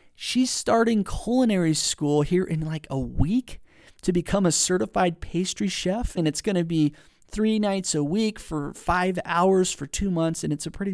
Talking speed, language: 185 wpm, English